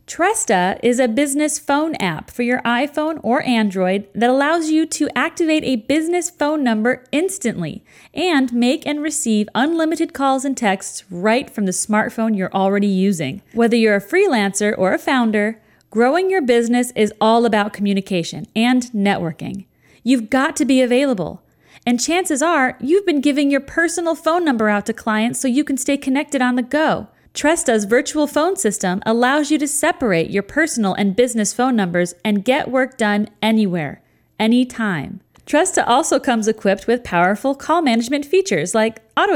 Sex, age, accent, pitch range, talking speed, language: female, 40-59, American, 210-295 Hz, 165 wpm, English